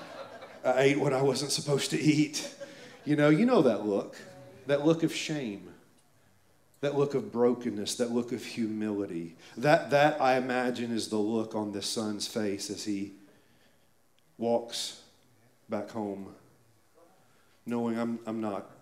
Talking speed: 145 wpm